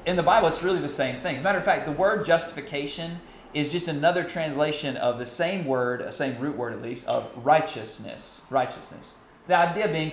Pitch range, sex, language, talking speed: 130-175 Hz, male, English, 215 wpm